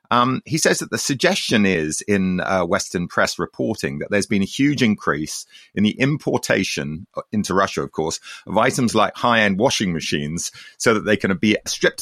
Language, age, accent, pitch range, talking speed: English, 30-49, British, 85-110 Hz, 185 wpm